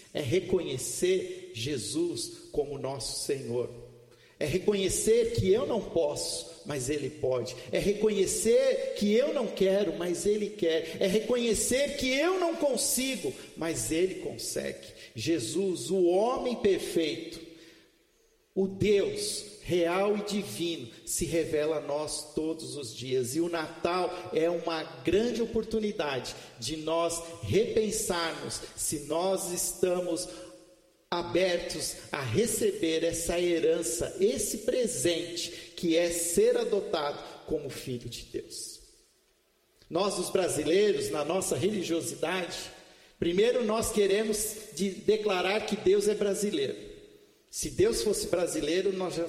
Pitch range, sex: 165-255 Hz, male